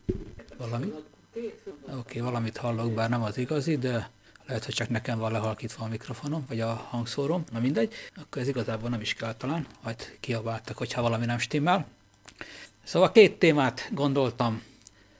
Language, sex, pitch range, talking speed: Hungarian, male, 115-140 Hz, 160 wpm